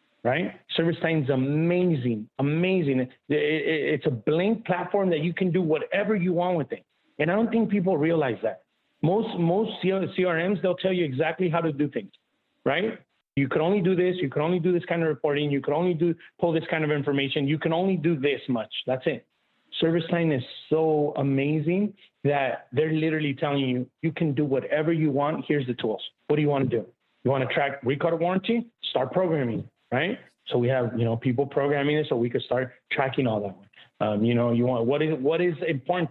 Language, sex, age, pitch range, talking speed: English, male, 30-49, 135-175 Hz, 215 wpm